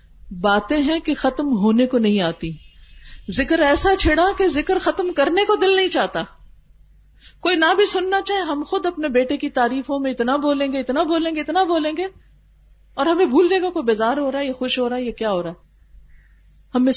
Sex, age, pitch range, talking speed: female, 50-69, 210-325 Hz, 210 wpm